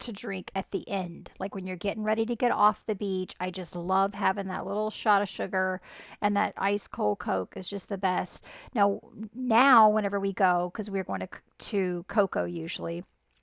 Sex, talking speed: female, 200 wpm